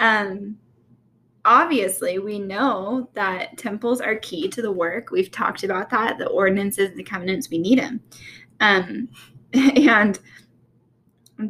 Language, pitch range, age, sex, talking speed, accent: English, 190-255 Hz, 10-29, female, 130 wpm, American